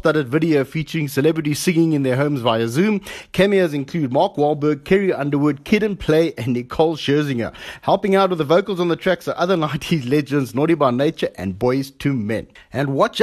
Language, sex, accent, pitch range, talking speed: English, male, South African, 135-175 Hz, 195 wpm